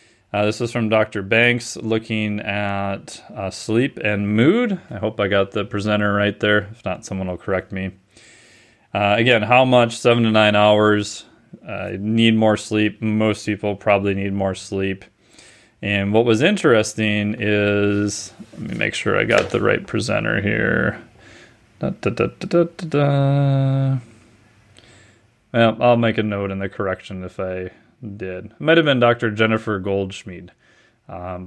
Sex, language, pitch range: male, English, 105-120 Hz